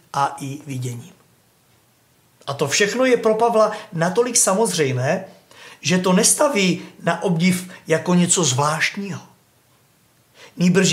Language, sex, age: Czech, male, 50-69